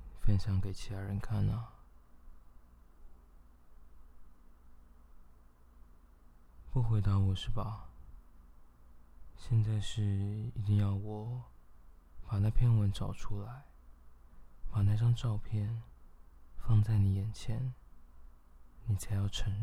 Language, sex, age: Chinese, male, 20-39